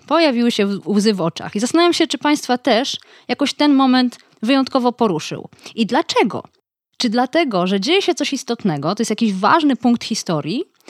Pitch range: 195-275 Hz